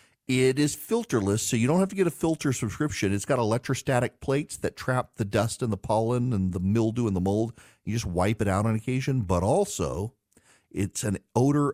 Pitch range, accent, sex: 100-140 Hz, American, male